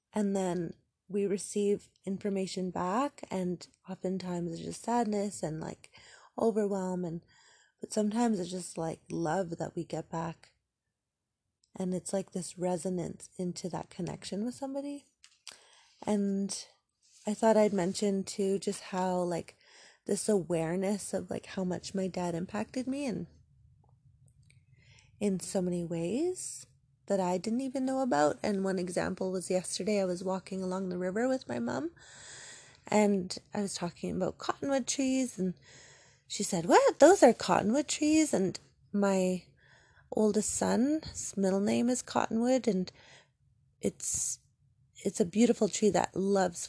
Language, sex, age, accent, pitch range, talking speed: English, female, 20-39, American, 170-210 Hz, 140 wpm